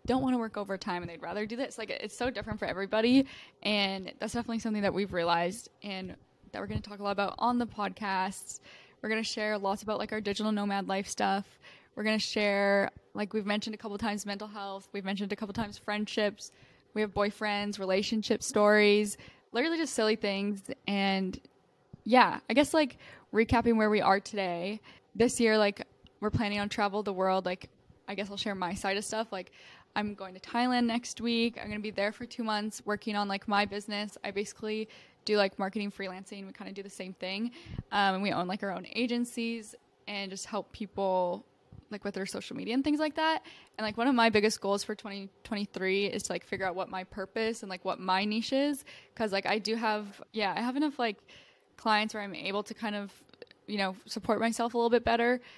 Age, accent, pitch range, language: 10-29, American, 195-225 Hz, English